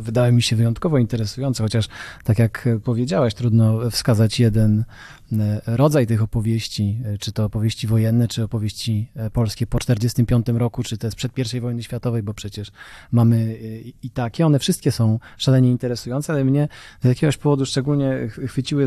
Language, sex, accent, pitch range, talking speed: Polish, male, native, 115-135 Hz, 155 wpm